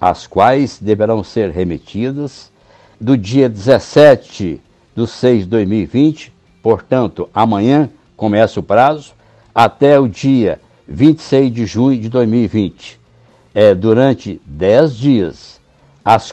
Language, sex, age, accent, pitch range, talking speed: Portuguese, male, 60-79, Brazilian, 105-130 Hz, 105 wpm